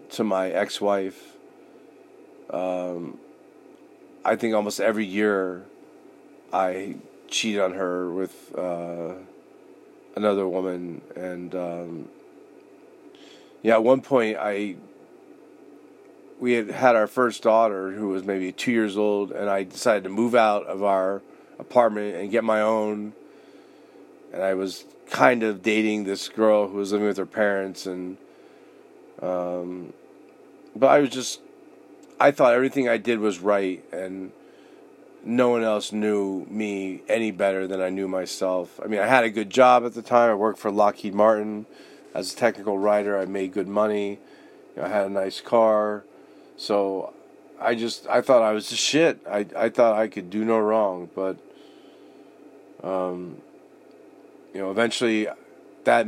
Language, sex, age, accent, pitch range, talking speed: English, male, 40-59, American, 95-110 Hz, 150 wpm